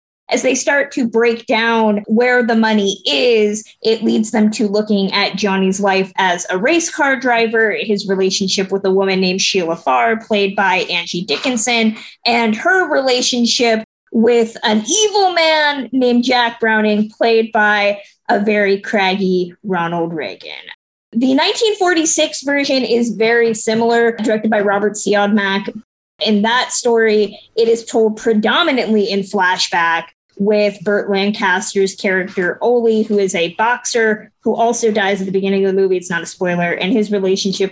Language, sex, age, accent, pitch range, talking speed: English, female, 20-39, American, 195-245 Hz, 155 wpm